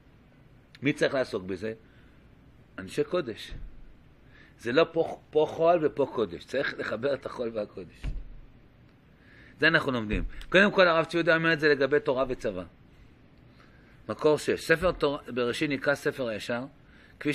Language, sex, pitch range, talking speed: Hebrew, male, 125-165 Hz, 140 wpm